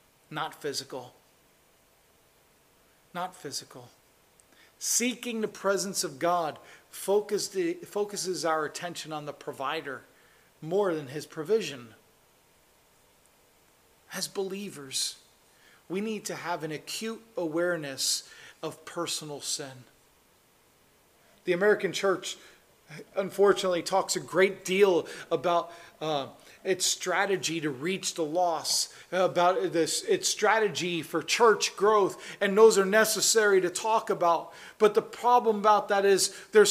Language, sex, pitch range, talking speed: English, male, 165-220 Hz, 115 wpm